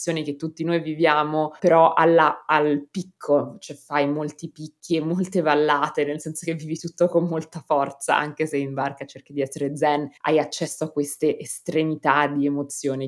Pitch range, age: 135-155 Hz, 20-39